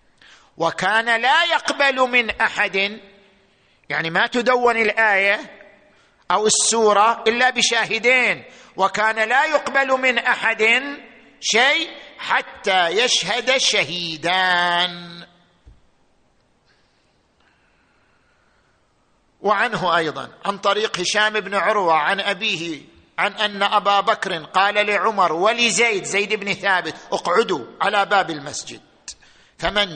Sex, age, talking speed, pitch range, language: male, 50-69, 90 wpm, 170-225 Hz, Arabic